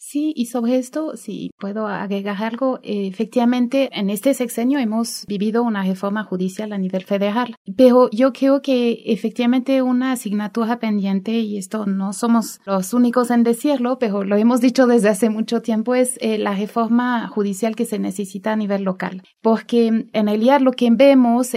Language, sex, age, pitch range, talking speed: Spanish, female, 30-49, 205-240 Hz, 175 wpm